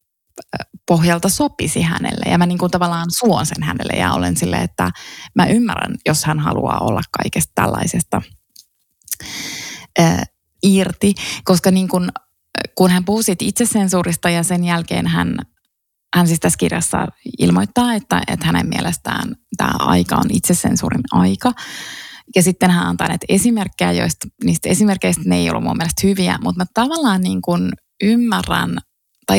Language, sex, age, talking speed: Finnish, female, 20-39, 145 wpm